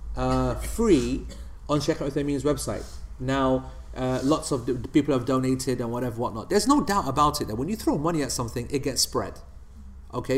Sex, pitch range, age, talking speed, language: male, 125-150 Hz, 30-49, 190 wpm, English